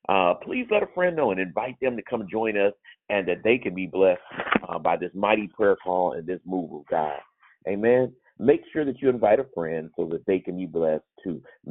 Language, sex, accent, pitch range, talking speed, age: English, male, American, 90-115 Hz, 230 wpm, 50-69